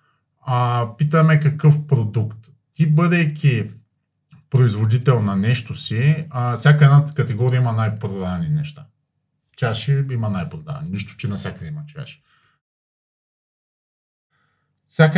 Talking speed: 105 wpm